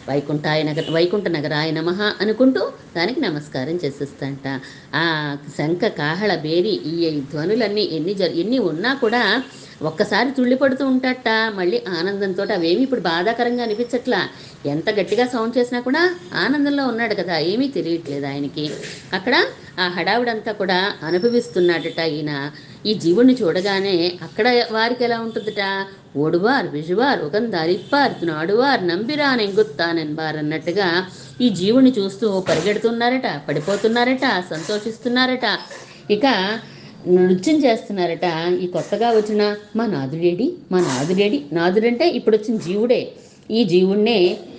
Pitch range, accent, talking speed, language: 165-230 Hz, native, 110 wpm, Telugu